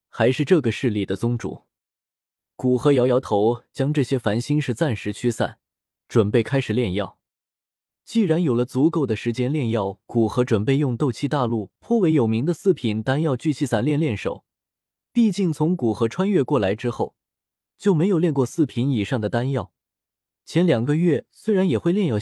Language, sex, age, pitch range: Chinese, male, 20-39, 115-160 Hz